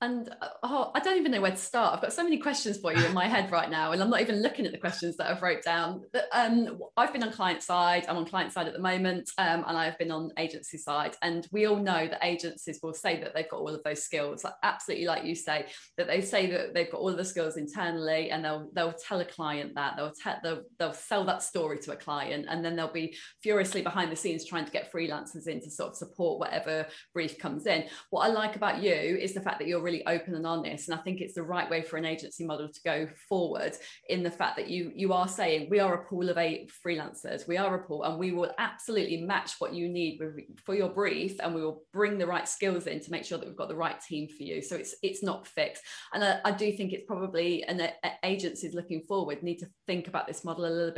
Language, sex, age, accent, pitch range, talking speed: English, female, 20-39, British, 165-195 Hz, 265 wpm